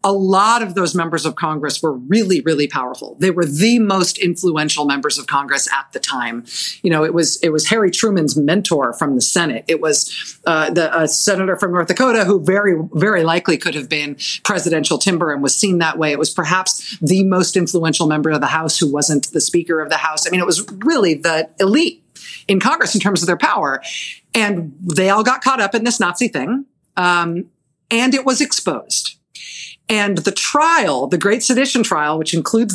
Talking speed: 205 wpm